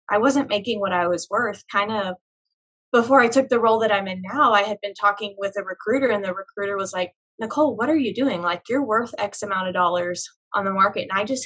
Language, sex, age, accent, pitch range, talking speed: English, female, 10-29, American, 190-225 Hz, 250 wpm